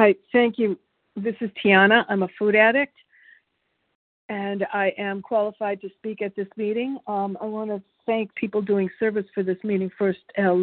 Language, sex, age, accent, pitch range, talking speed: English, female, 50-69, American, 185-210 Hz, 180 wpm